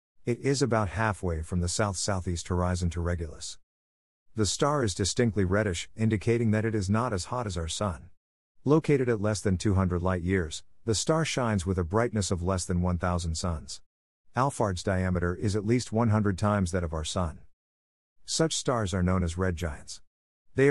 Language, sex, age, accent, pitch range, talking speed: English, male, 50-69, American, 85-115 Hz, 175 wpm